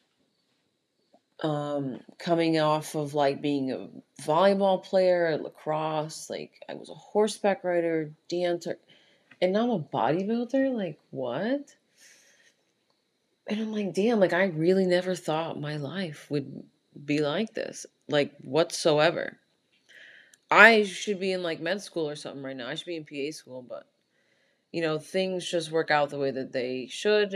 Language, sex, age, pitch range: English, female, 30-49, 145-185 Hz